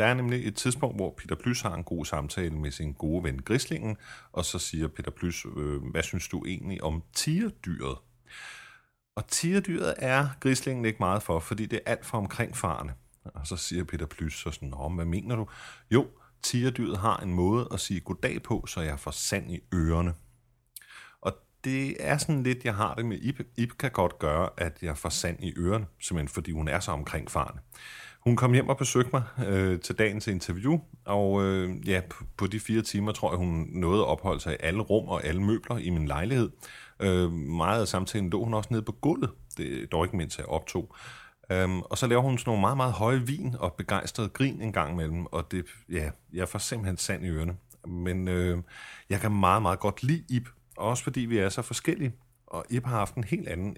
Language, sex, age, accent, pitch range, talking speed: Danish, male, 30-49, native, 85-120 Hz, 215 wpm